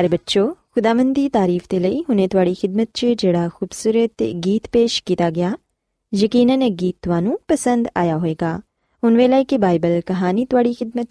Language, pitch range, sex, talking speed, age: Punjabi, 180-260 Hz, female, 165 wpm, 20-39